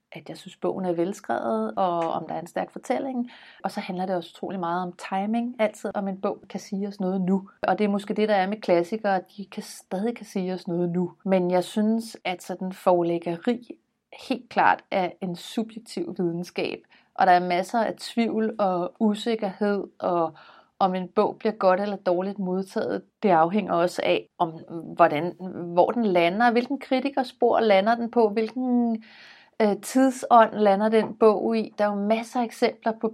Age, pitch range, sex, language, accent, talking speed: 30-49, 175-220 Hz, female, Danish, native, 195 wpm